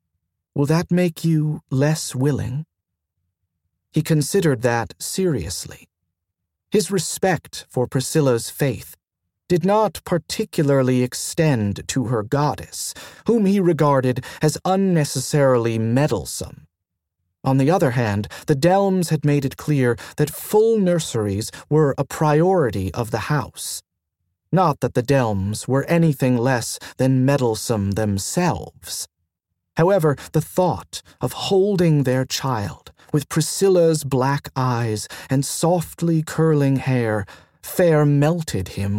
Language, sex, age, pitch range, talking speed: English, male, 40-59, 95-155 Hz, 115 wpm